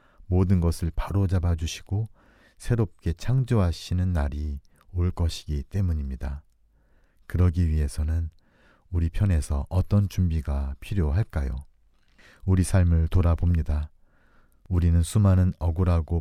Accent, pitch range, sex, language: native, 75-95 Hz, male, Korean